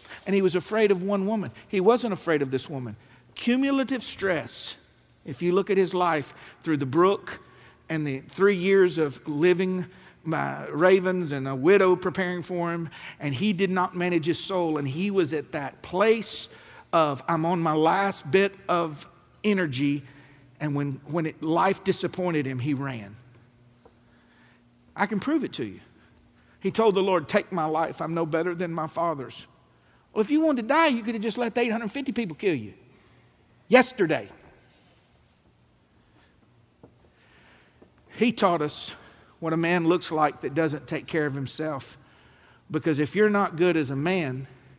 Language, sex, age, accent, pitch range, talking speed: English, male, 50-69, American, 130-185 Hz, 165 wpm